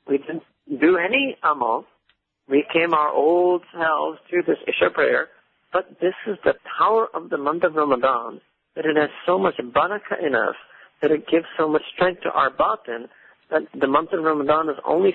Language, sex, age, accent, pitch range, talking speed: English, male, 50-69, American, 135-170 Hz, 190 wpm